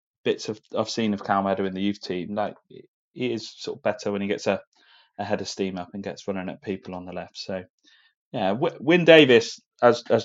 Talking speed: 230 wpm